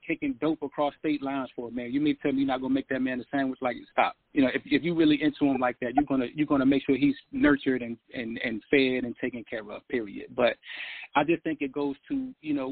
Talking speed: 275 wpm